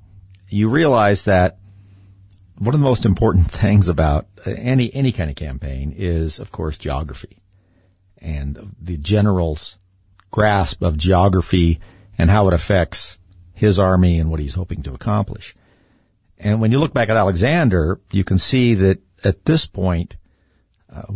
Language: English